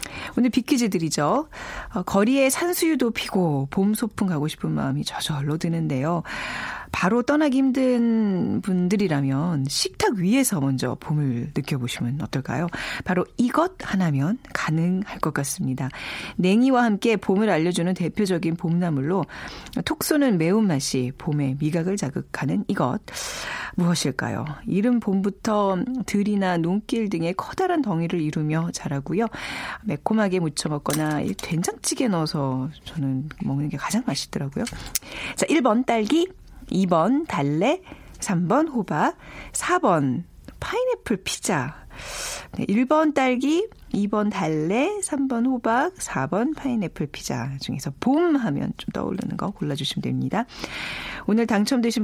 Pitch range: 155-240 Hz